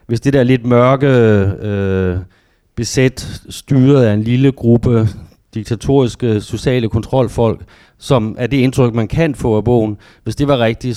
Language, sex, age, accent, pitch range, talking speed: Danish, male, 30-49, native, 110-150 Hz, 155 wpm